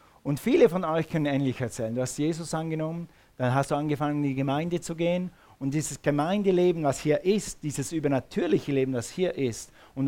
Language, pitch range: German, 130-160 Hz